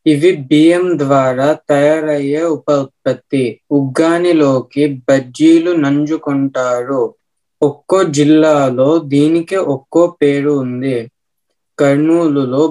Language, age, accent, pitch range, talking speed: Telugu, 20-39, native, 135-160 Hz, 75 wpm